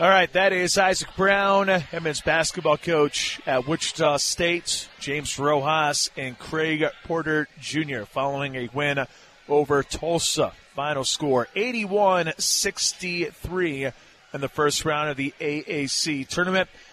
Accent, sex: American, male